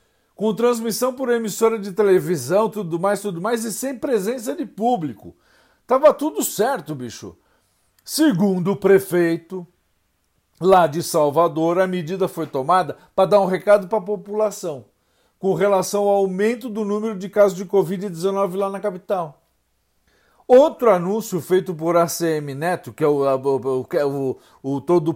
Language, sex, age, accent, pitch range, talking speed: Portuguese, male, 50-69, Brazilian, 160-215 Hz, 150 wpm